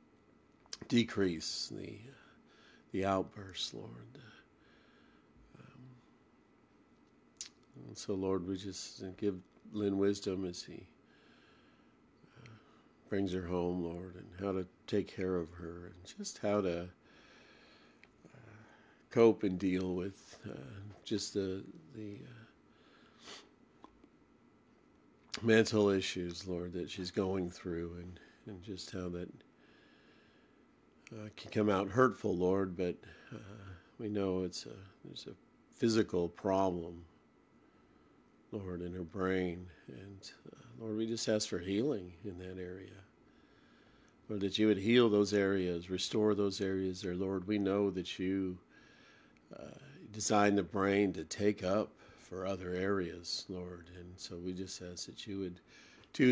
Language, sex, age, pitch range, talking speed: English, male, 50-69, 90-105 Hz, 130 wpm